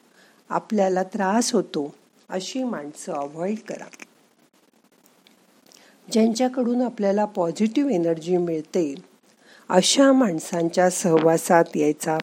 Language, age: Marathi, 50-69